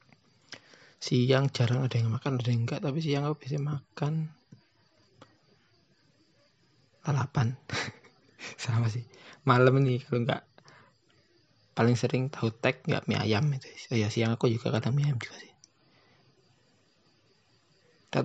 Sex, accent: male, native